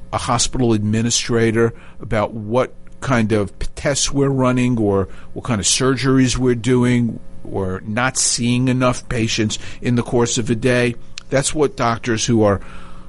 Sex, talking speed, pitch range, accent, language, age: male, 150 wpm, 105-125 Hz, American, English, 50-69